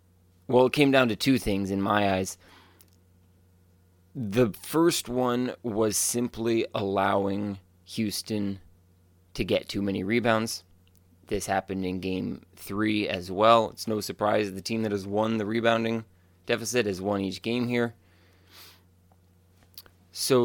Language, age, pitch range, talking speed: English, 20-39, 90-115 Hz, 135 wpm